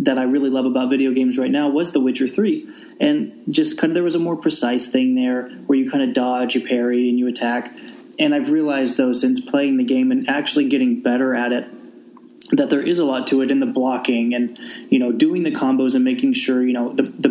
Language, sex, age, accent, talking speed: English, male, 20-39, American, 245 wpm